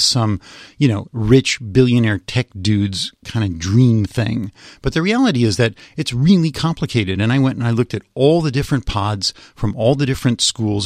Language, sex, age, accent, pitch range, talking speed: English, male, 40-59, American, 115-145 Hz, 195 wpm